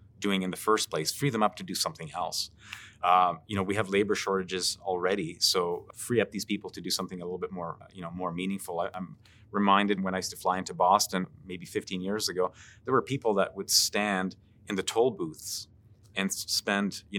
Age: 30-49